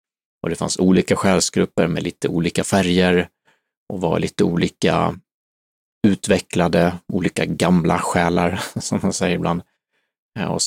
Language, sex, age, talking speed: Swedish, male, 30-49, 125 wpm